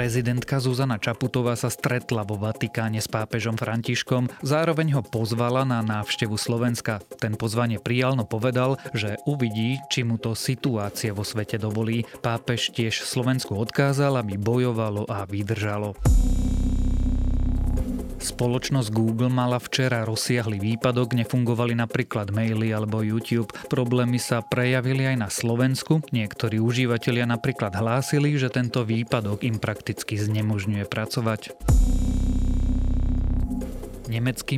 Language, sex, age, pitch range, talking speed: Slovak, male, 30-49, 110-125 Hz, 115 wpm